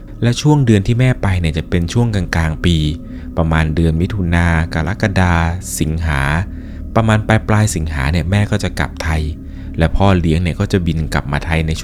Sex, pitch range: male, 80-100 Hz